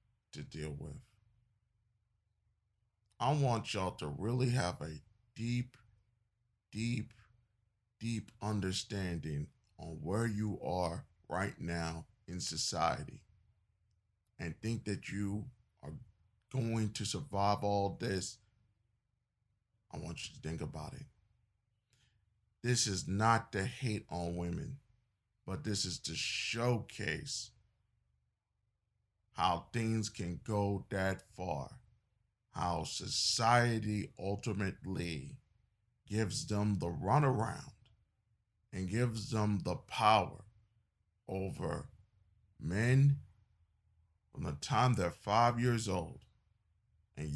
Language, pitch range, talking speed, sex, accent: English, 95-115 Hz, 100 wpm, male, American